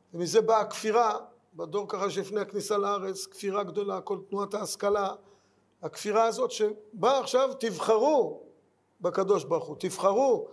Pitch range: 195-295 Hz